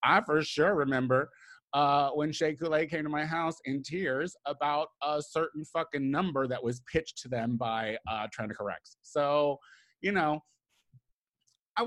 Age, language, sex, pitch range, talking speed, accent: 30-49, English, male, 130-180 Hz, 160 wpm, American